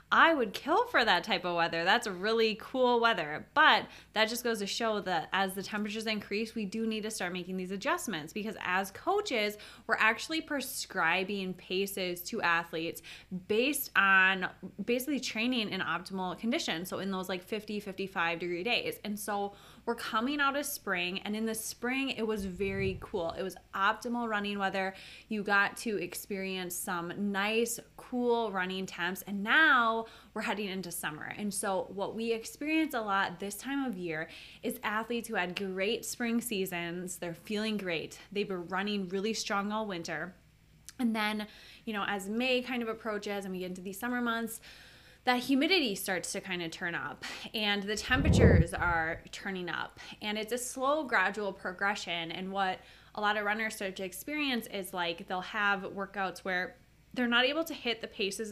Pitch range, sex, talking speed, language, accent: 185-230 Hz, female, 180 wpm, English, American